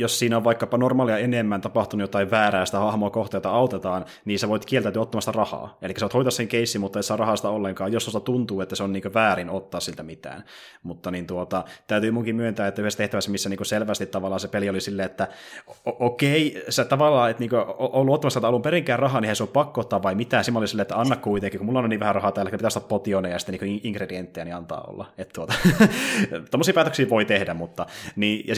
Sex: male